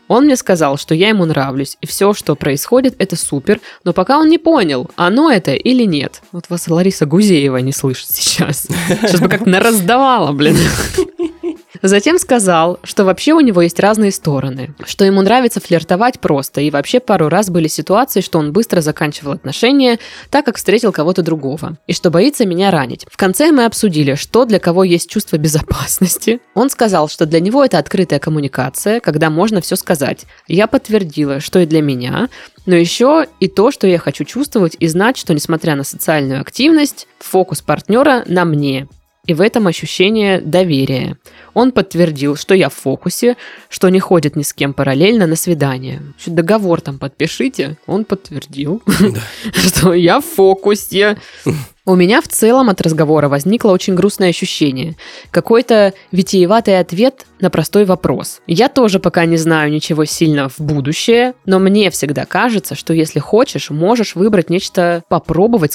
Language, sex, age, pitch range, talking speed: Russian, female, 20-39, 155-210 Hz, 165 wpm